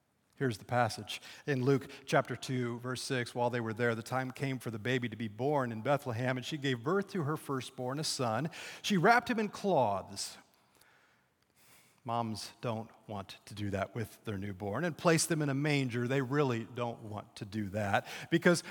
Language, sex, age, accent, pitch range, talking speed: English, male, 40-59, American, 110-135 Hz, 195 wpm